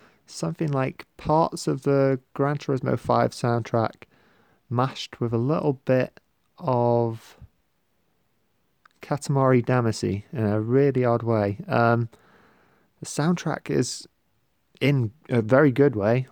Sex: male